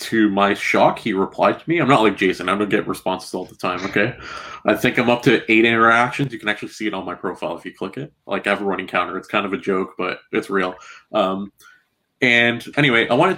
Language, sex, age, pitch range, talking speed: English, male, 20-39, 100-125 Hz, 260 wpm